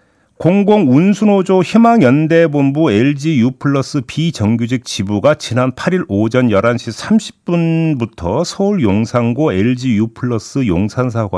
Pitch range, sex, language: 115-170 Hz, male, Korean